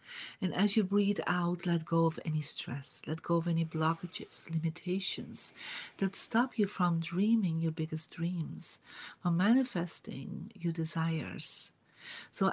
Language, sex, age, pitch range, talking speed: English, female, 50-69, 160-185 Hz, 140 wpm